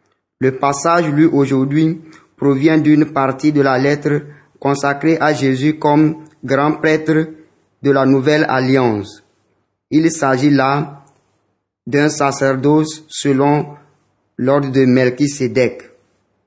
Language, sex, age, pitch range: French, male, 30-49, 135-150 Hz